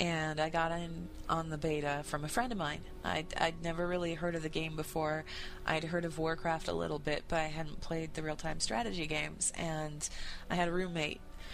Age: 20-39